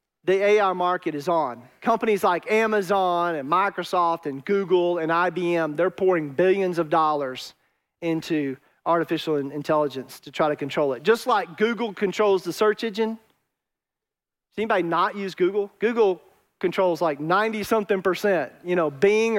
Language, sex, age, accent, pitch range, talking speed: English, male, 40-59, American, 165-205 Hz, 145 wpm